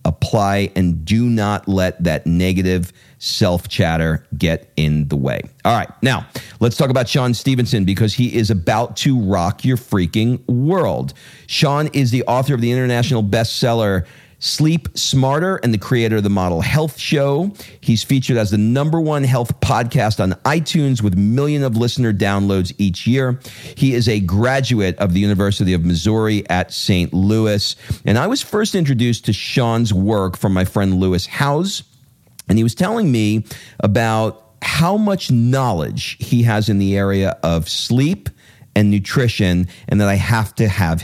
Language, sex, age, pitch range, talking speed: English, male, 40-59, 95-130 Hz, 165 wpm